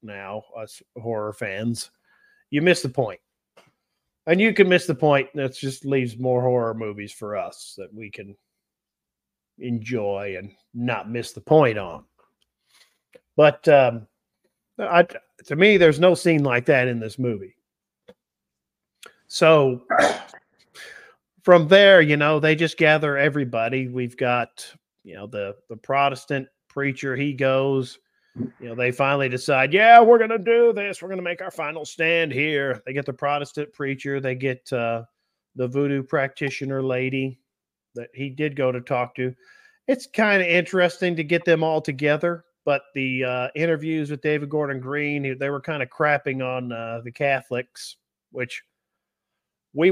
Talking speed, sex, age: 155 wpm, male, 40-59